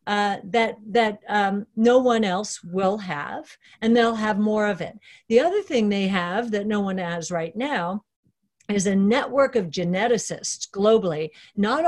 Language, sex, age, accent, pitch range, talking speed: English, female, 50-69, American, 185-225 Hz, 165 wpm